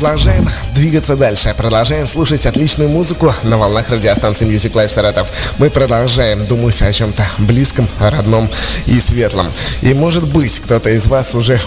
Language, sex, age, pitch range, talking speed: Russian, male, 20-39, 95-125 Hz, 150 wpm